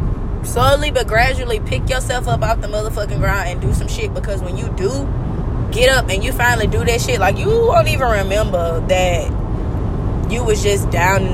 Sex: female